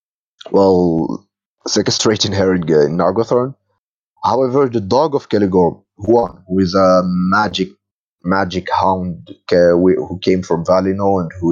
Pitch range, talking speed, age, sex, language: 90-105 Hz, 120 wpm, 30-49, male, English